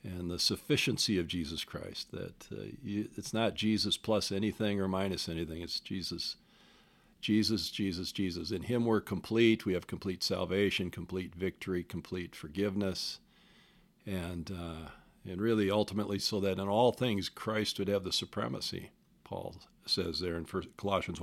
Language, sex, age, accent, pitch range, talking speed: English, male, 50-69, American, 95-110 Hz, 155 wpm